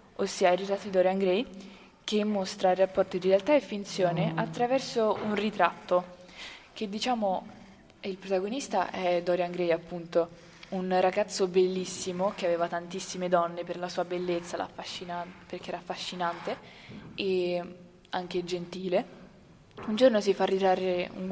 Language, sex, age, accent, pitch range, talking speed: Italian, female, 20-39, native, 175-195 Hz, 135 wpm